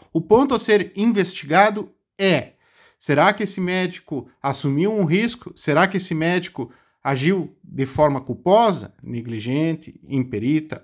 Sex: male